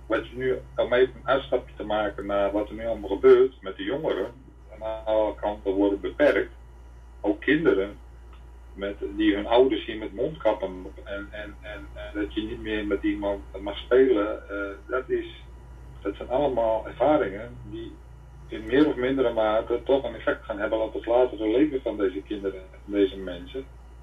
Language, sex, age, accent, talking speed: Dutch, male, 40-59, Dutch, 175 wpm